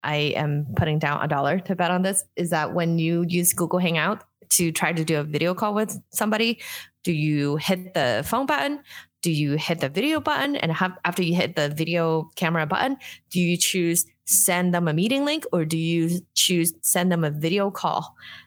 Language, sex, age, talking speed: English, female, 20-39, 205 wpm